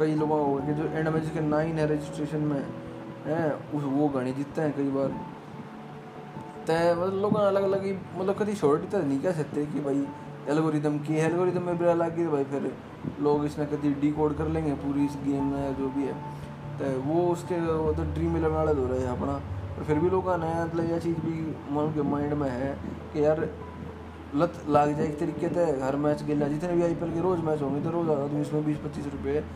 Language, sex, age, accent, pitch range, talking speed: Hindi, male, 20-39, native, 140-165 Hz, 205 wpm